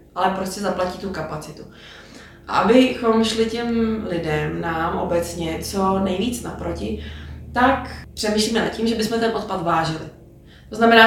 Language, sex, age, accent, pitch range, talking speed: Czech, female, 20-39, native, 170-195 Hz, 135 wpm